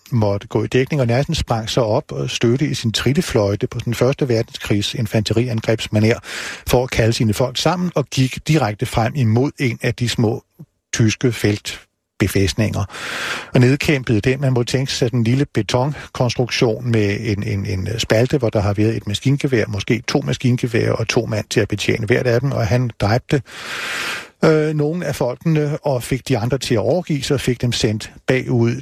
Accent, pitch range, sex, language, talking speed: native, 110-135 Hz, male, Danish, 185 wpm